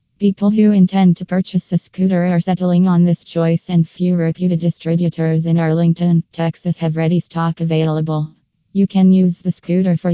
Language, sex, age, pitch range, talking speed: English, female, 20-39, 165-180 Hz, 170 wpm